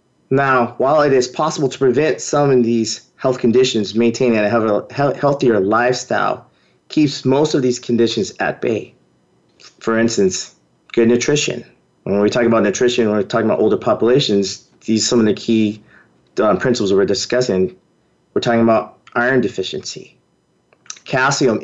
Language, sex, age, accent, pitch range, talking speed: English, male, 30-49, American, 105-130 Hz, 155 wpm